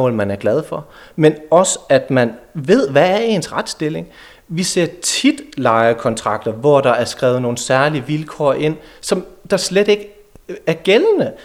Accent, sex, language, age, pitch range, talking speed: native, male, Danish, 30-49, 120-180 Hz, 160 wpm